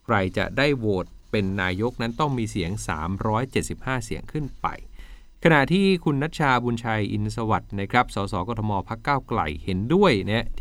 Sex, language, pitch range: male, Thai, 95-125 Hz